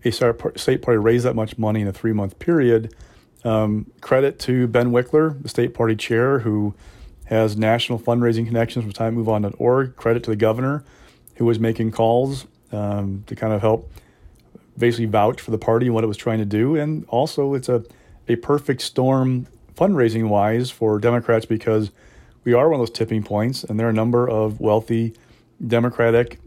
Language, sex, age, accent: English, male, 40-59, American